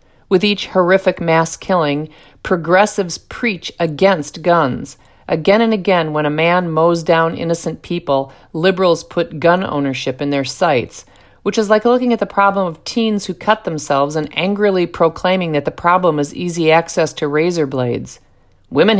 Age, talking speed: 50-69, 160 wpm